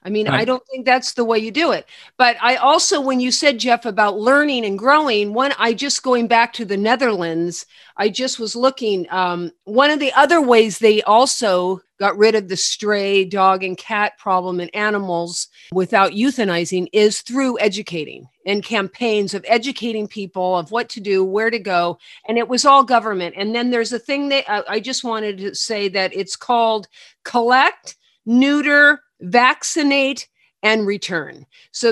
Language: English